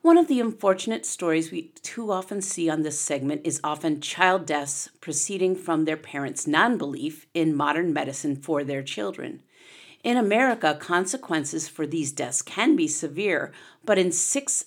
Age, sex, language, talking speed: 50-69, female, English, 160 wpm